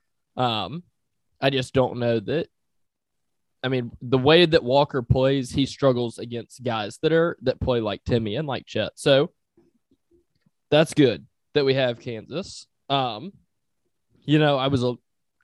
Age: 20-39